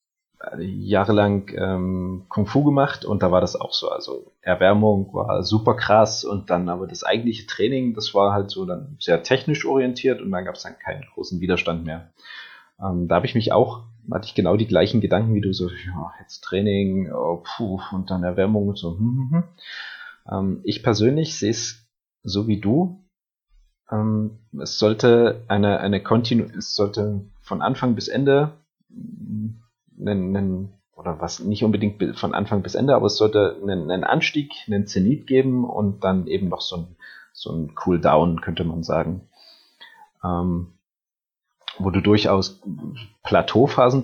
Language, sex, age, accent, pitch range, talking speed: German, male, 30-49, German, 95-125 Hz, 170 wpm